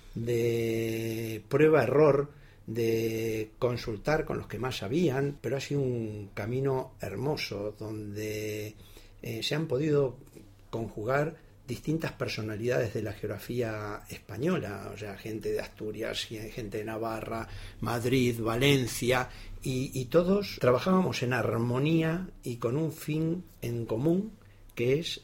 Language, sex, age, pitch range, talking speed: Spanish, male, 50-69, 105-130 Hz, 120 wpm